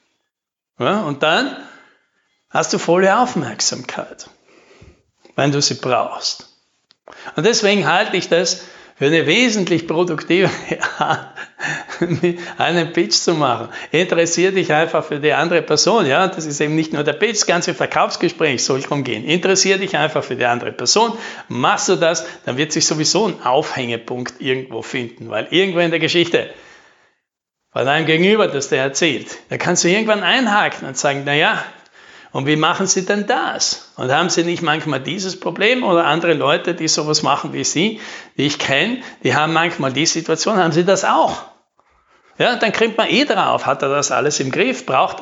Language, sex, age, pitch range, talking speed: German, male, 60-79, 155-195 Hz, 170 wpm